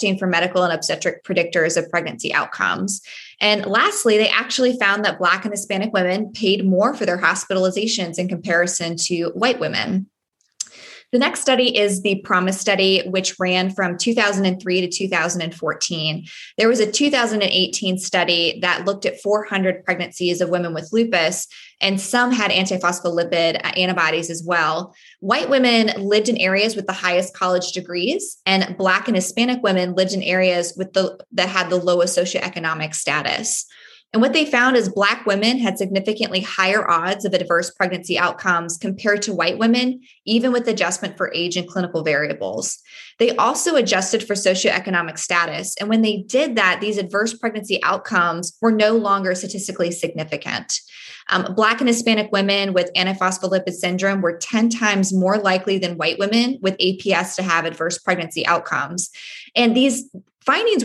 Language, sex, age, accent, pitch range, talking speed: English, female, 20-39, American, 180-215 Hz, 160 wpm